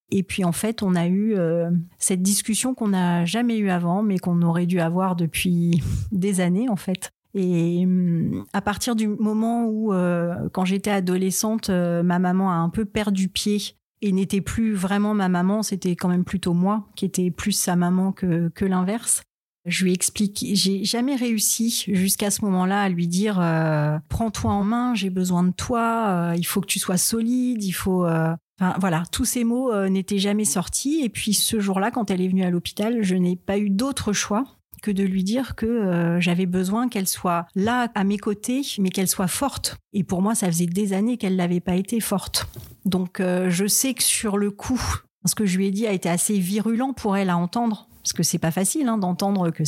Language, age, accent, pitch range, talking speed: French, 30-49, French, 175-215 Hz, 220 wpm